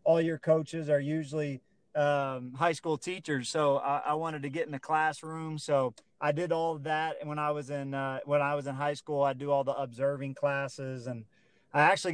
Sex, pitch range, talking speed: male, 140-165 Hz, 220 wpm